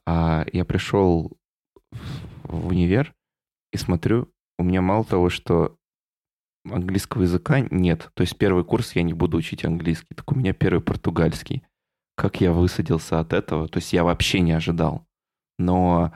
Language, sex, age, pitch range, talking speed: Russian, male, 20-39, 85-100 Hz, 150 wpm